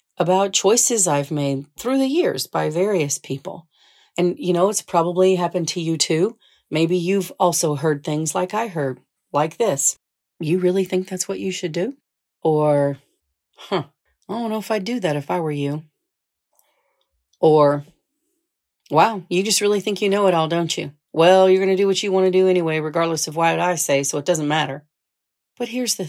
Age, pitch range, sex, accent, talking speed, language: 40-59, 155-195 Hz, female, American, 195 wpm, English